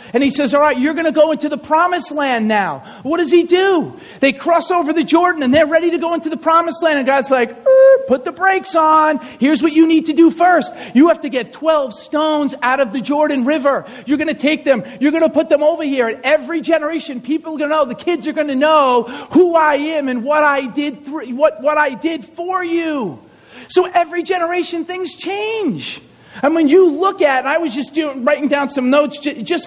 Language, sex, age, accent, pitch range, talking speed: English, male, 40-59, American, 260-320 Hz, 235 wpm